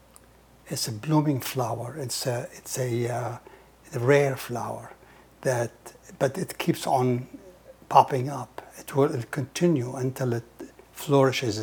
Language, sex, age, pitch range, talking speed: English, male, 60-79, 125-160 Hz, 130 wpm